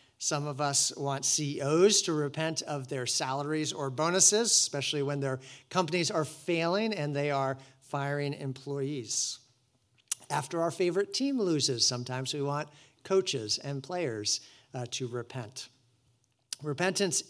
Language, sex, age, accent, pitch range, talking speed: English, male, 50-69, American, 125-150 Hz, 130 wpm